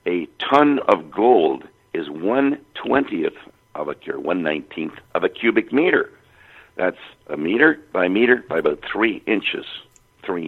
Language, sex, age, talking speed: English, male, 60-79, 135 wpm